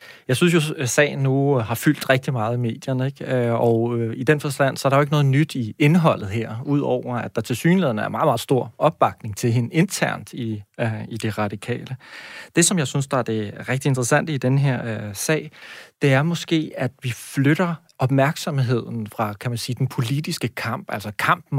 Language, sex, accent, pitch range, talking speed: Danish, male, native, 120-155 Hz, 210 wpm